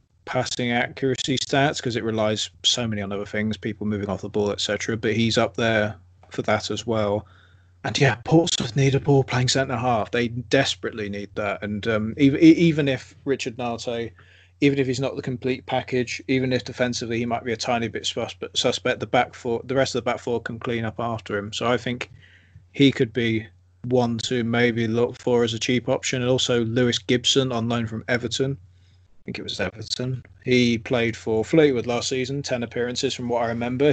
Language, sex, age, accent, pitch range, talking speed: English, male, 20-39, British, 105-125 Hz, 205 wpm